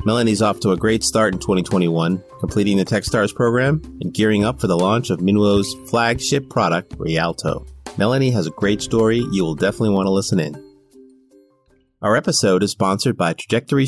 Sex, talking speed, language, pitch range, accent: male, 175 wpm, English, 95-120 Hz, American